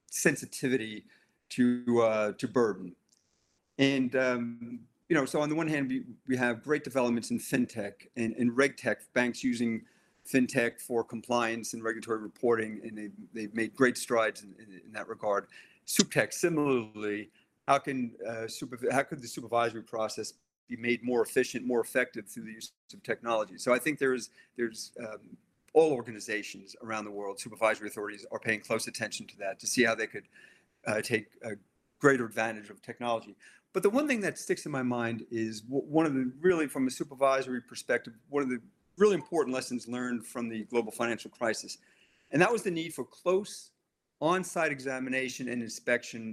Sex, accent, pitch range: male, American, 115-135 Hz